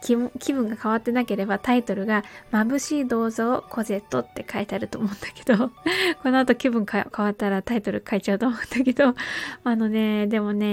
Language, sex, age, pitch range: Japanese, female, 20-39, 215-275 Hz